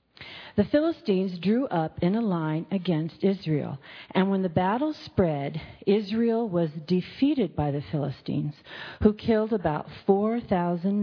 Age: 40-59